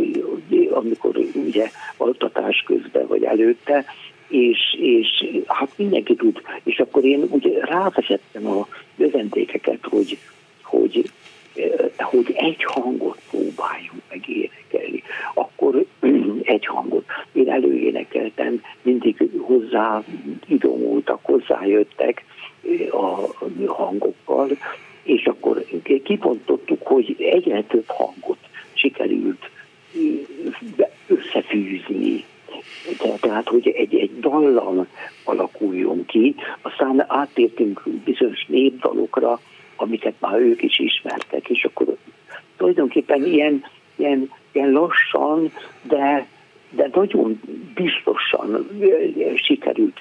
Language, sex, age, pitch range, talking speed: Hungarian, male, 60-79, 325-420 Hz, 90 wpm